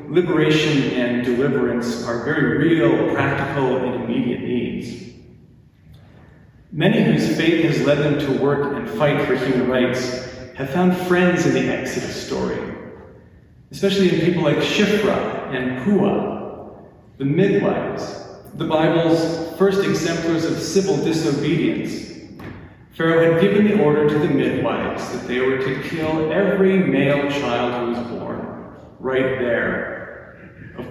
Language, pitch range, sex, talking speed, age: English, 135-185 Hz, male, 130 wpm, 40-59